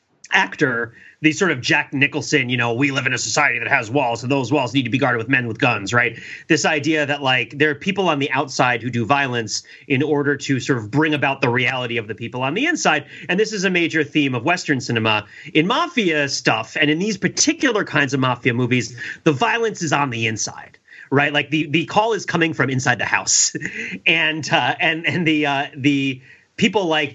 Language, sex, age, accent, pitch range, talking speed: English, male, 30-49, American, 125-155 Hz, 230 wpm